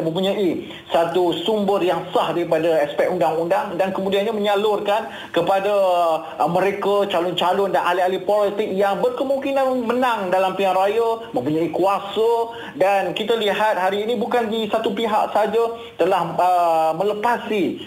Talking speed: 130 wpm